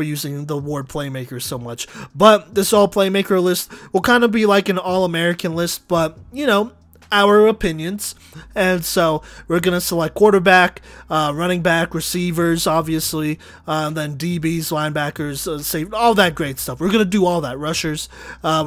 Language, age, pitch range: English, 20-39, 155-195 Hz